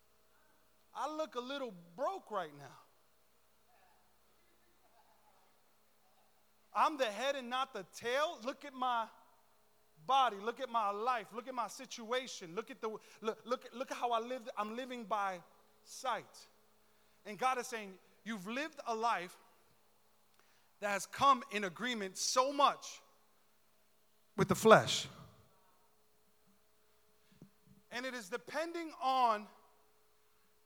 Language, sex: English, male